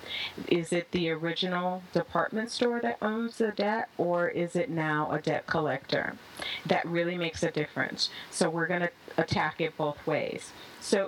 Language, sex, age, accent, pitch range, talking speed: English, female, 30-49, American, 155-185 Hz, 170 wpm